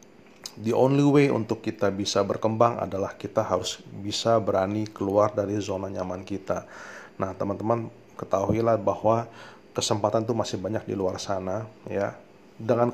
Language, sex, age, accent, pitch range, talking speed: Indonesian, male, 30-49, native, 100-115 Hz, 140 wpm